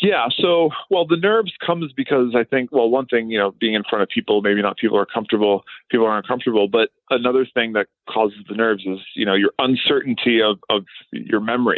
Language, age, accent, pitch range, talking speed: English, 30-49, American, 110-145 Hz, 220 wpm